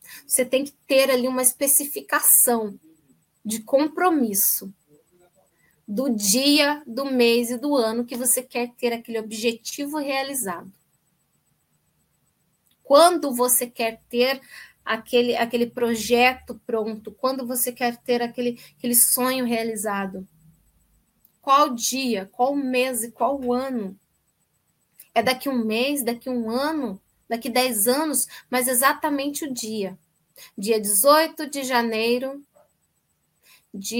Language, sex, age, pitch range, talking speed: Portuguese, female, 10-29, 230-275 Hz, 115 wpm